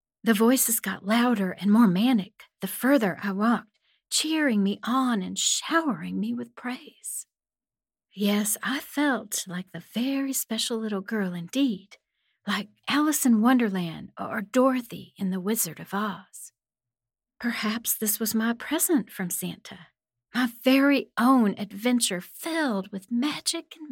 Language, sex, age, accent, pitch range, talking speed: English, female, 40-59, American, 185-240 Hz, 140 wpm